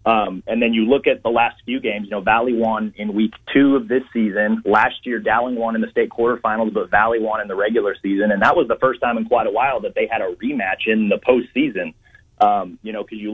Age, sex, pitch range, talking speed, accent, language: 30-49, male, 105-140 Hz, 260 wpm, American, English